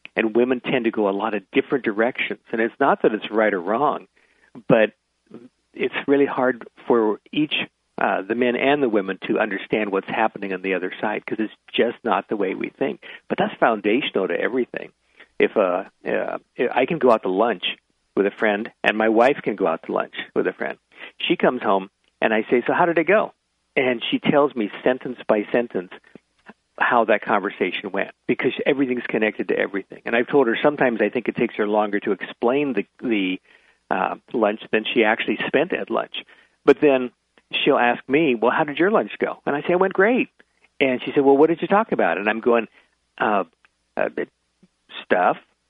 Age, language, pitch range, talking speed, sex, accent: 50-69, English, 105-140 Hz, 205 wpm, male, American